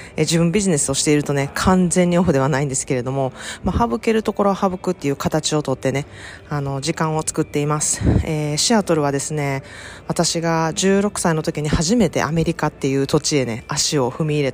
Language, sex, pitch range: Japanese, female, 130-165 Hz